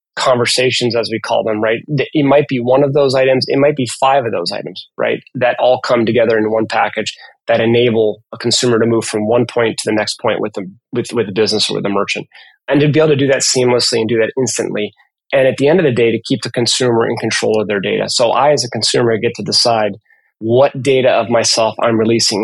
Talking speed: 245 wpm